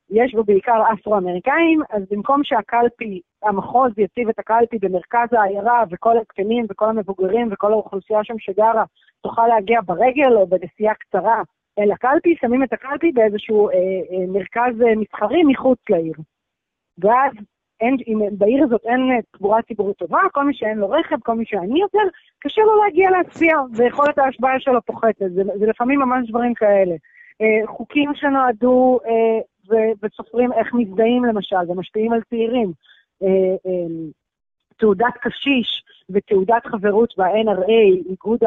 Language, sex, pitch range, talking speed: Hebrew, female, 205-260 Hz, 135 wpm